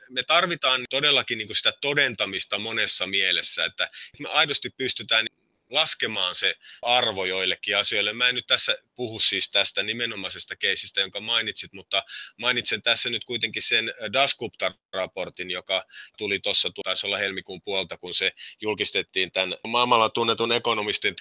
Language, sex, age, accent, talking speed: Finnish, male, 30-49, native, 135 wpm